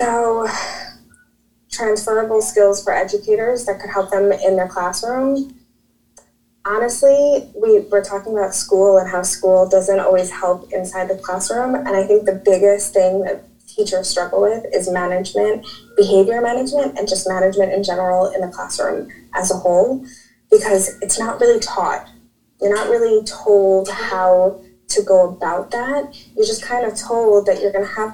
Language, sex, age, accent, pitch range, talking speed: English, female, 20-39, American, 190-235 Hz, 160 wpm